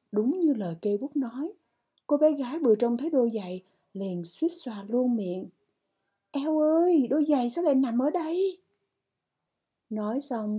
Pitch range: 205-280 Hz